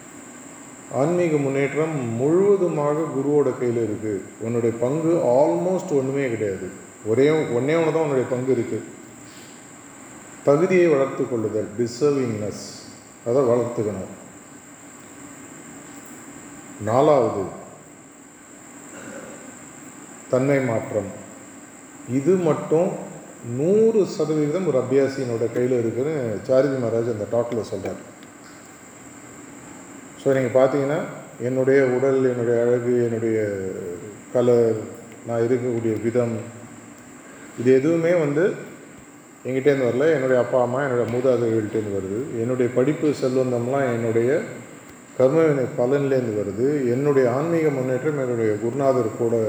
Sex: male